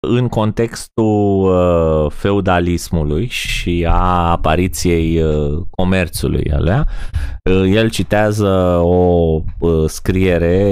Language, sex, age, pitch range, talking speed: Romanian, male, 20-39, 85-110 Hz, 65 wpm